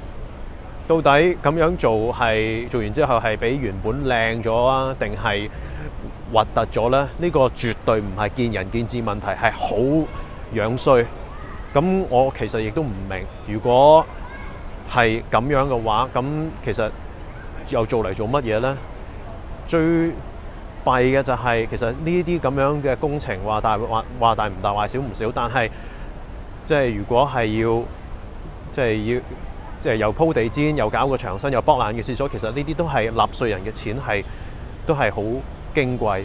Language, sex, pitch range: Chinese, male, 105-135 Hz